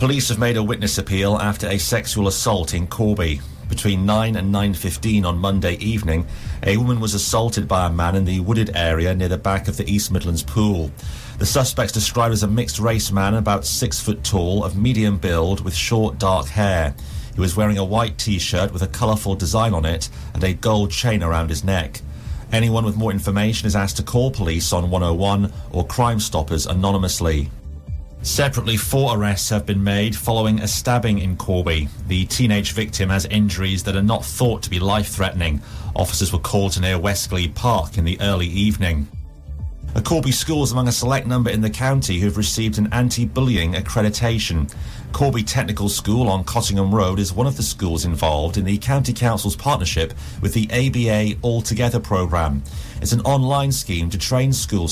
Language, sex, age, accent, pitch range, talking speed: English, male, 40-59, British, 90-110 Hz, 185 wpm